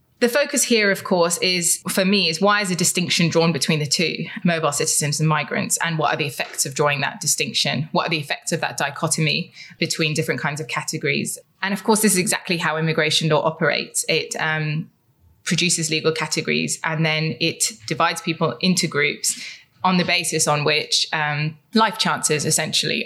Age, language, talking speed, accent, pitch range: 20-39, English, 190 wpm, British, 155-180 Hz